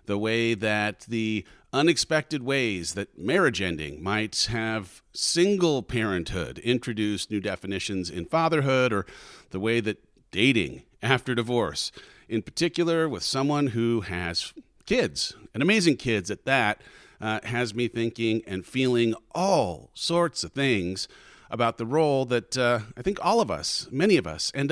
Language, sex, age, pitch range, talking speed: English, male, 40-59, 105-150 Hz, 150 wpm